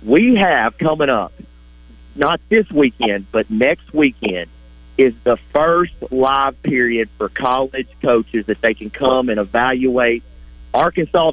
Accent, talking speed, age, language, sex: American, 130 wpm, 40-59, English, male